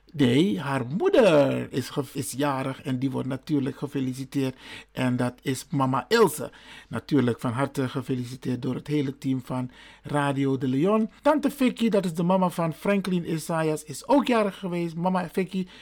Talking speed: 165 wpm